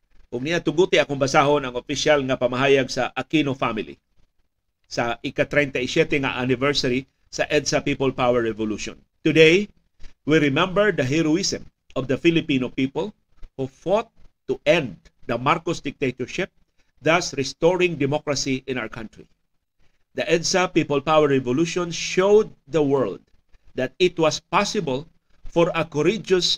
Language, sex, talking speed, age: Filipino, male, 130 wpm, 50-69